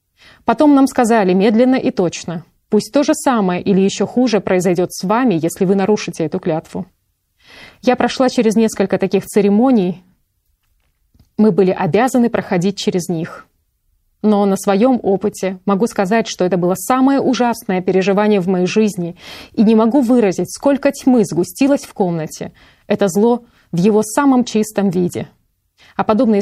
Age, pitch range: 30-49, 190-230 Hz